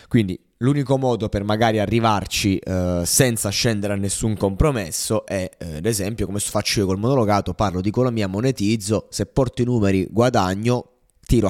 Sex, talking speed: male, 160 wpm